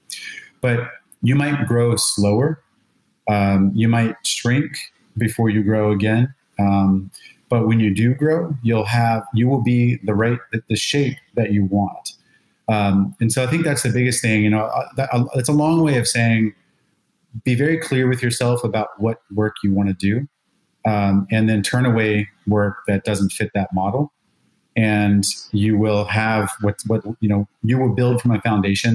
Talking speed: 175 wpm